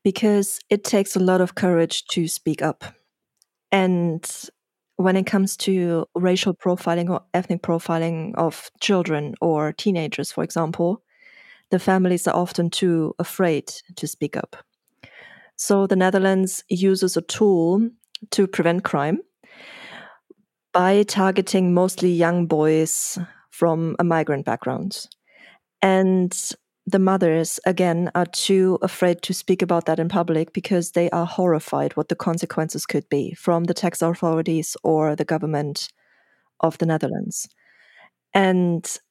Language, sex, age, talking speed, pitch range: English, female, 20-39, 130 wpm, 165-190 Hz